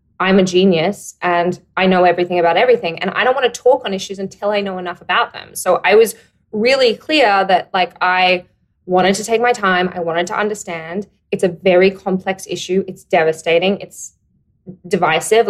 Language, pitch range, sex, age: English, 175-210 Hz, female, 20-39